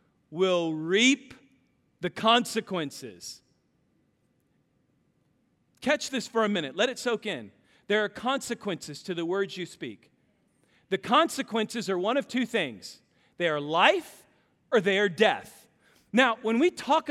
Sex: male